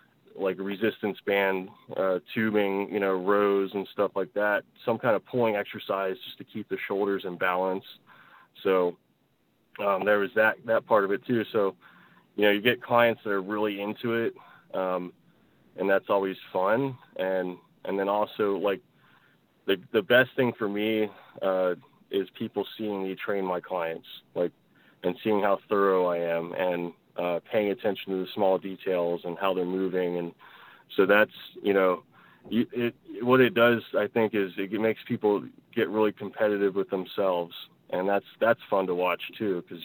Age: 20-39